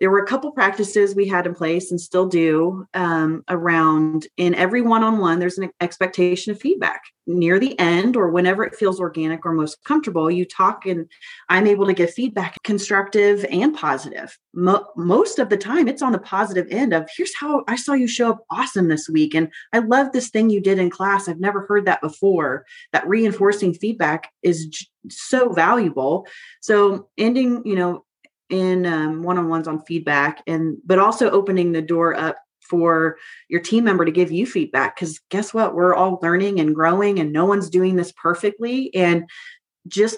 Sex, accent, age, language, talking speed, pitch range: female, American, 30-49, English, 190 wpm, 170-225 Hz